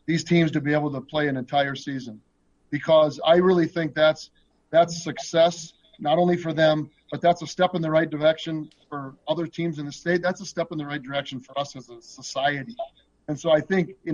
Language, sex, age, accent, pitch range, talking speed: English, male, 40-59, American, 140-165 Hz, 220 wpm